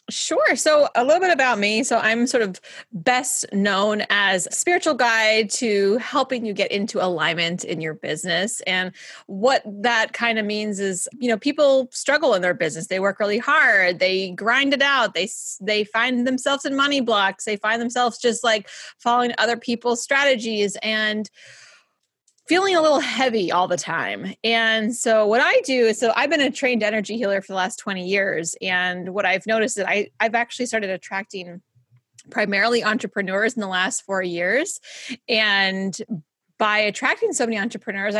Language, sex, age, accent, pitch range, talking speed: English, female, 30-49, American, 195-245 Hz, 180 wpm